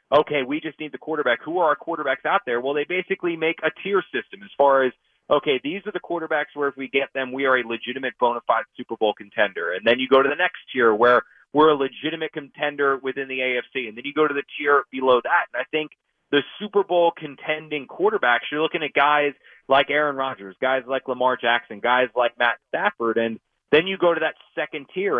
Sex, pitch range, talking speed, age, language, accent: male, 120-155 Hz, 230 wpm, 30-49, English, American